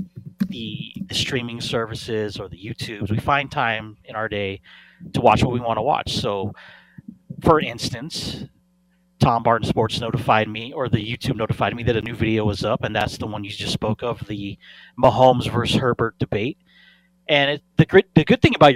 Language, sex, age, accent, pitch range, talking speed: English, male, 30-49, American, 115-160 Hz, 190 wpm